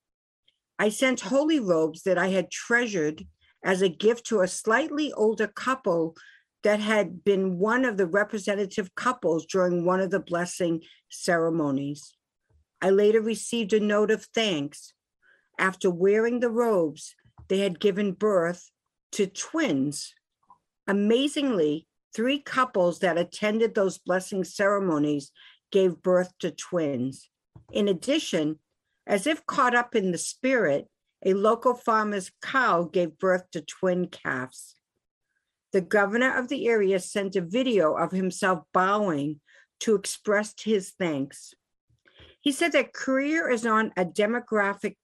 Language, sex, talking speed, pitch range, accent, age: English, female, 135 wpm, 180-230 Hz, American, 50-69